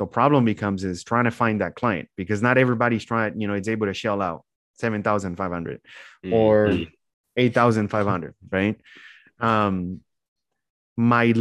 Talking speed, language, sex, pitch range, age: 135 wpm, English, male, 105-130 Hz, 30-49